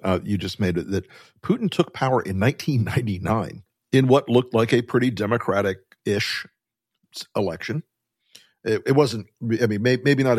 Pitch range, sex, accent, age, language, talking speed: 105-130 Hz, male, American, 50-69, English, 155 wpm